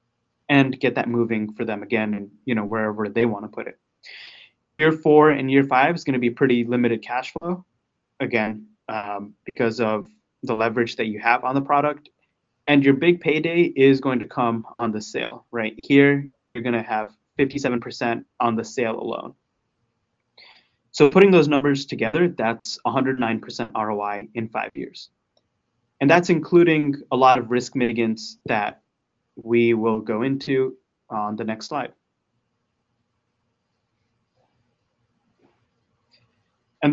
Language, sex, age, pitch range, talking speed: English, male, 20-39, 115-135 Hz, 145 wpm